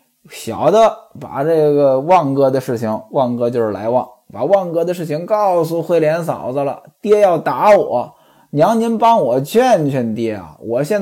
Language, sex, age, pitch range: Chinese, male, 20-39, 170-275 Hz